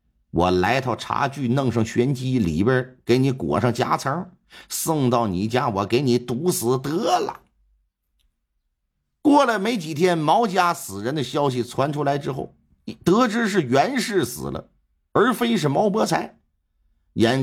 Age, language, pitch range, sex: 50-69, Chinese, 80-135 Hz, male